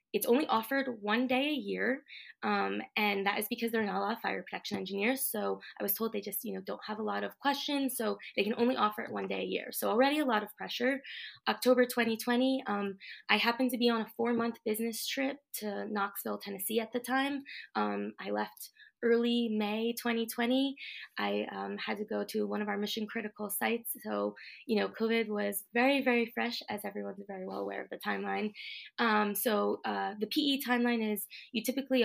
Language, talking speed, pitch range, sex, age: English, 210 wpm, 200-245 Hz, female, 20-39